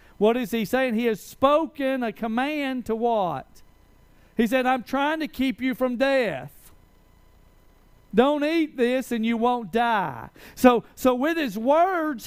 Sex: male